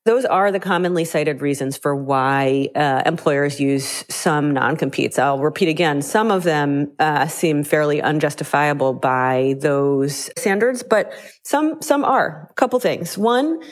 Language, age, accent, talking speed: English, 30-49, American, 150 wpm